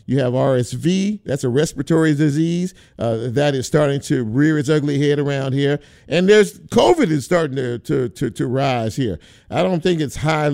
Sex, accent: male, American